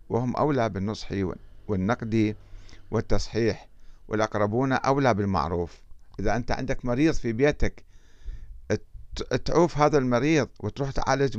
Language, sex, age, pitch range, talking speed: Arabic, male, 50-69, 95-145 Hz, 100 wpm